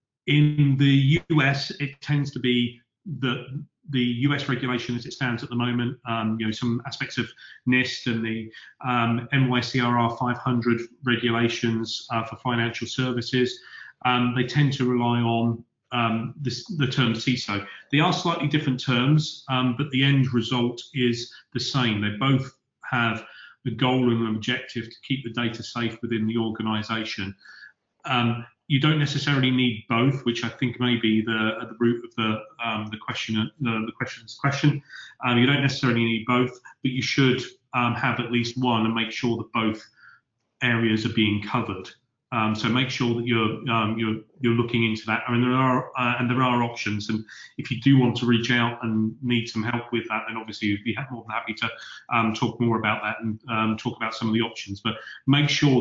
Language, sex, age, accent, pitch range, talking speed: English, male, 30-49, British, 115-130 Hz, 195 wpm